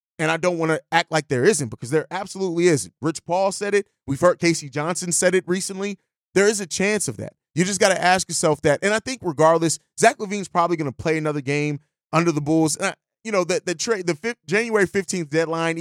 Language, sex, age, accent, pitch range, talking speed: English, male, 30-49, American, 145-175 Hz, 250 wpm